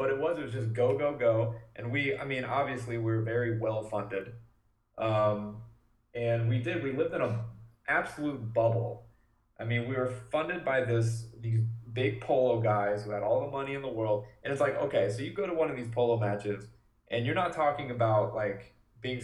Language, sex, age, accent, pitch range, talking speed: English, male, 20-39, American, 110-125 Hz, 210 wpm